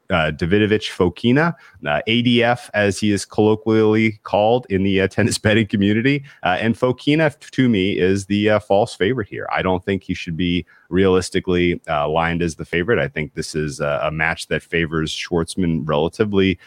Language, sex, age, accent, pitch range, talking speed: English, male, 30-49, American, 80-95 Hz, 180 wpm